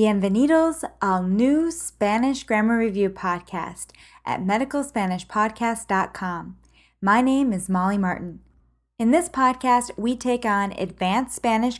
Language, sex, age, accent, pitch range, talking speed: English, female, 20-39, American, 175-245 Hz, 110 wpm